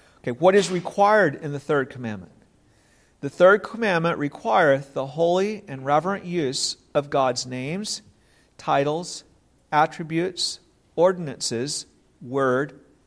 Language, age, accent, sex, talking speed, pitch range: English, 50-69, American, male, 105 wpm, 145-185 Hz